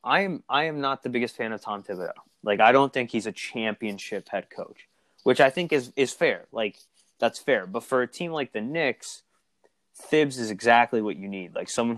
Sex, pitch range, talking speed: male, 105-130 Hz, 220 wpm